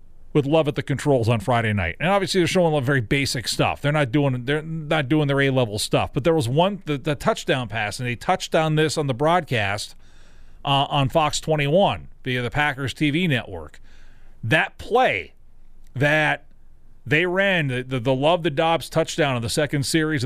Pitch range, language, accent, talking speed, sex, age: 130-170 Hz, English, American, 200 wpm, male, 40-59